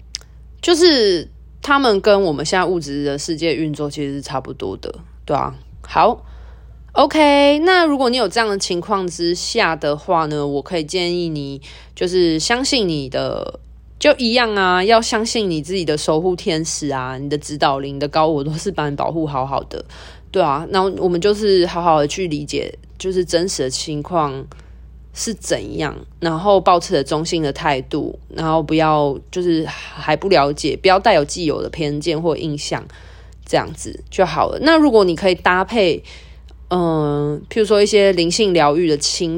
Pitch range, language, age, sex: 145-195 Hz, Chinese, 20-39, female